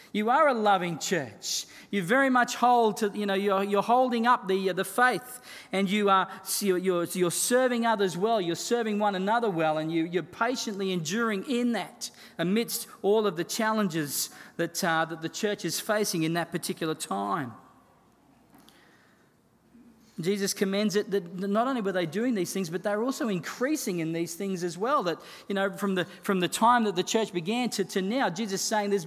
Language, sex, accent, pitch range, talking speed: English, male, Australian, 175-220 Hz, 200 wpm